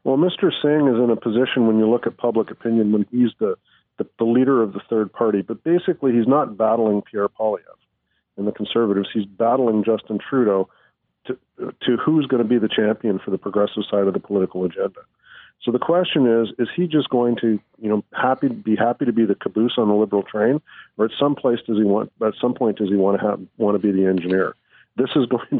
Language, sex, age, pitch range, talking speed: English, male, 50-69, 105-120 Hz, 230 wpm